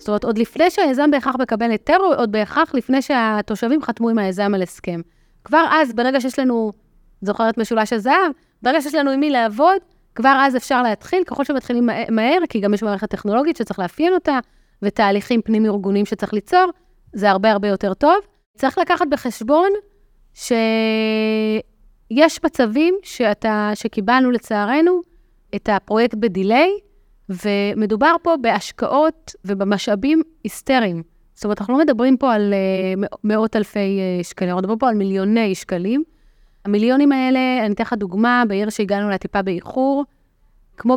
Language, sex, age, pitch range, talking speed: Hebrew, female, 30-49, 205-275 Hz, 145 wpm